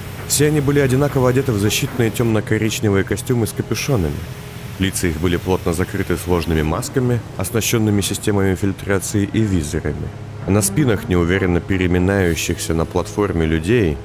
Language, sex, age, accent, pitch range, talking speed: Russian, male, 30-49, native, 90-115 Hz, 130 wpm